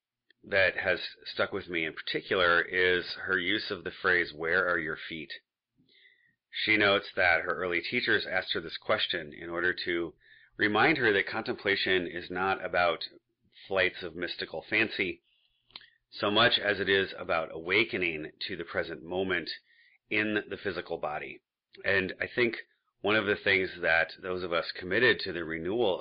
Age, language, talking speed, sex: 30-49, English, 165 wpm, male